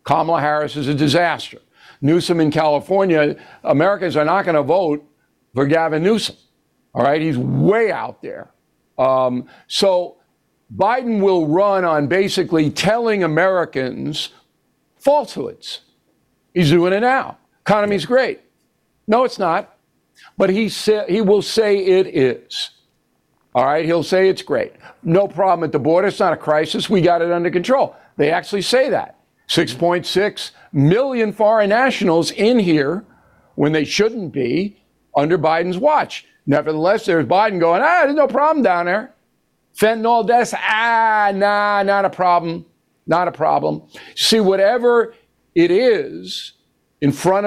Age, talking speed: 60-79, 140 wpm